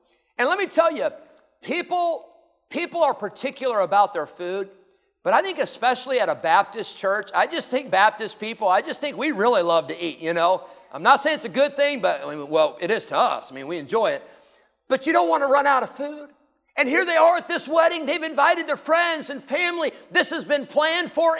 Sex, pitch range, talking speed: male, 195-300 Hz, 225 wpm